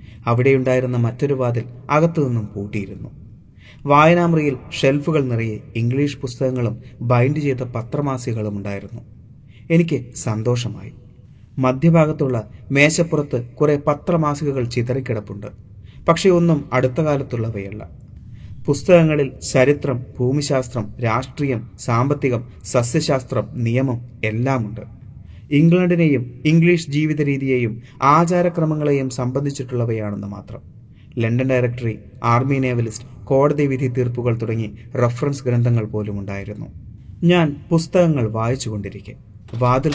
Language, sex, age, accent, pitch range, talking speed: Malayalam, male, 30-49, native, 115-140 Hz, 85 wpm